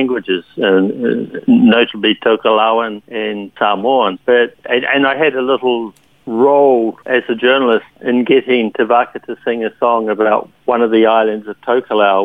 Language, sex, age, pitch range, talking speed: English, male, 60-79, 105-130 Hz, 135 wpm